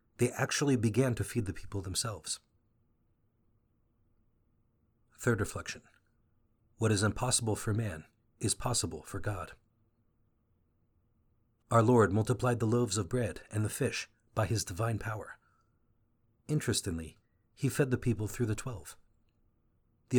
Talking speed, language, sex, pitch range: 125 wpm, English, male, 105-120 Hz